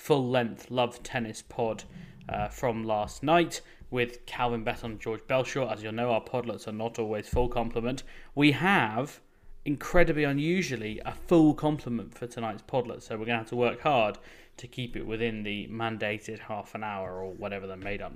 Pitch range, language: 110-135 Hz, English